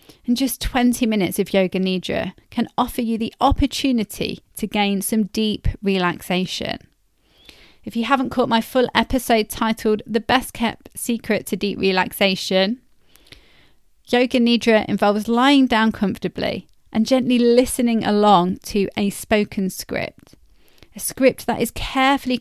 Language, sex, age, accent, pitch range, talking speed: English, female, 30-49, British, 205-245 Hz, 135 wpm